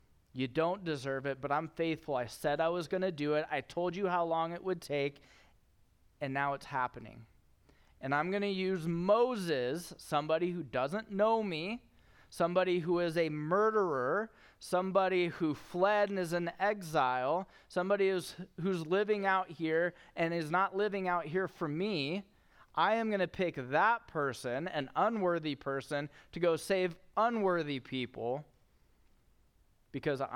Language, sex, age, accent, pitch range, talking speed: English, male, 30-49, American, 140-185 Hz, 160 wpm